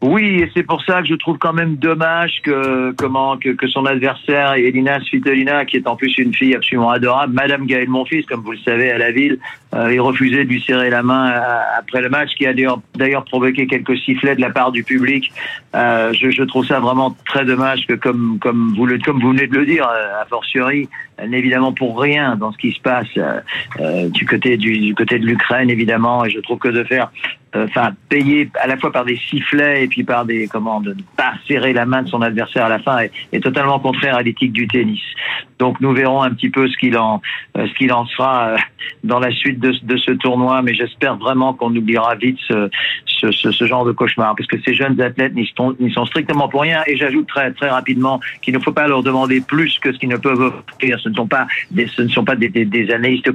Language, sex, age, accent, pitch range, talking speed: French, male, 50-69, French, 120-135 Hz, 245 wpm